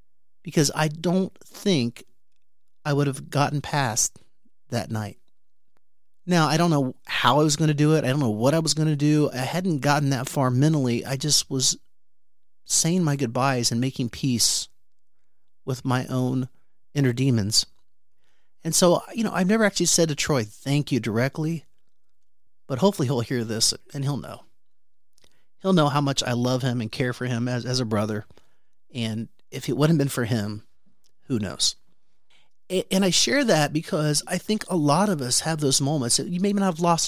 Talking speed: 190 wpm